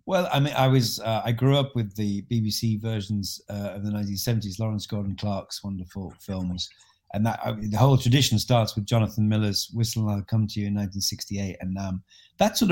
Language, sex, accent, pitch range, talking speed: English, male, British, 105-130 Hz, 210 wpm